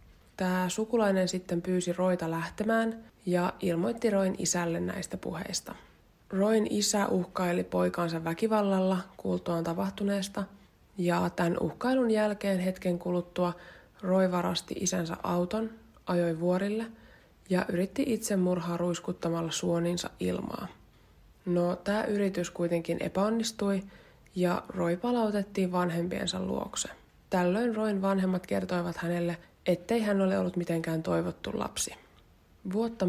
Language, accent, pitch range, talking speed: Finnish, native, 175-205 Hz, 110 wpm